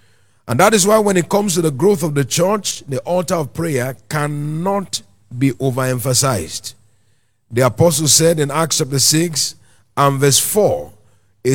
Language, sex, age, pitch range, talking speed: English, male, 50-69, 115-165 Hz, 155 wpm